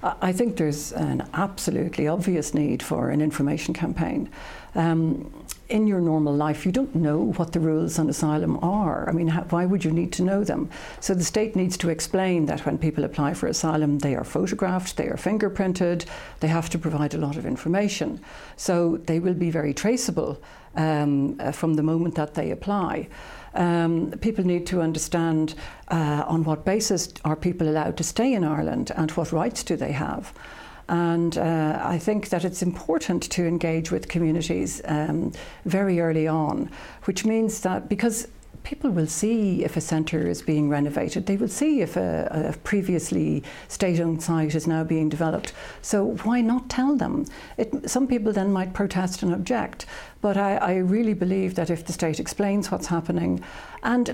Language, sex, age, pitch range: English, female, 60-79, 160-200 Hz